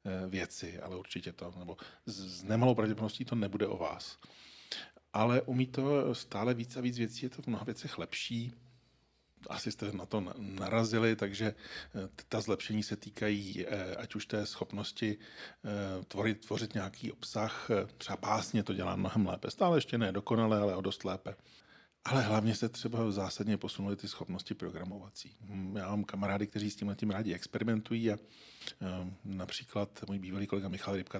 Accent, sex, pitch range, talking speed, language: native, male, 95-115 Hz, 160 wpm, Czech